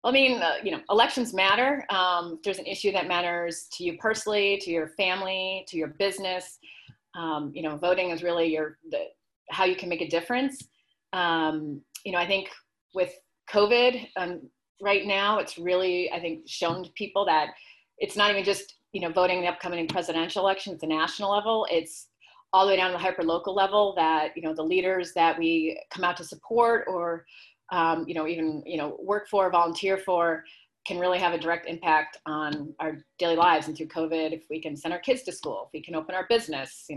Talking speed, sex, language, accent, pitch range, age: 210 wpm, female, English, American, 165-195 Hz, 30-49